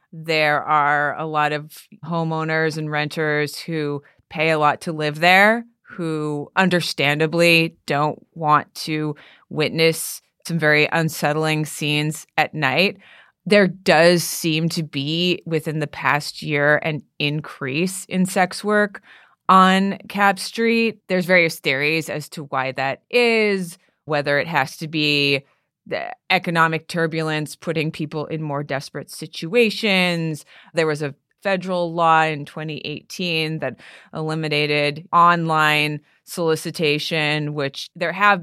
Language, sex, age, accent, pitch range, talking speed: English, female, 30-49, American, 150-175 Hz, 125 wpm